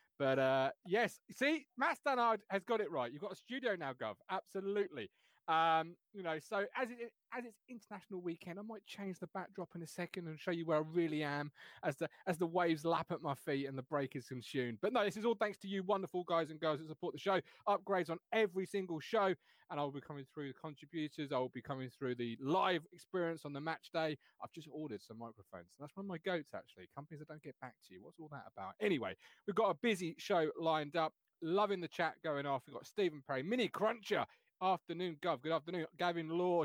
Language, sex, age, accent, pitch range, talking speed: English, male, 30-49, British, 145-205 Hz, 235 wpm